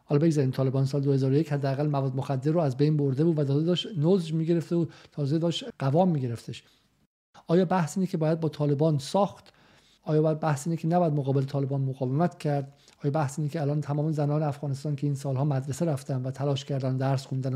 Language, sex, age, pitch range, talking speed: Persian, male, 50-69, 140-165 Hz, 205 wpm